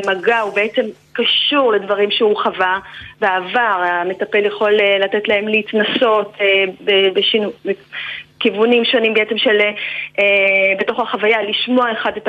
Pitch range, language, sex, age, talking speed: 185-215 Hz, Hebrew, female, 30-49, 125 wpm